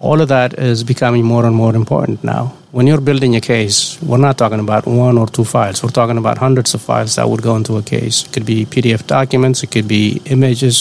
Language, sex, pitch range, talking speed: English, male, 115-130 Hz, 245 wpm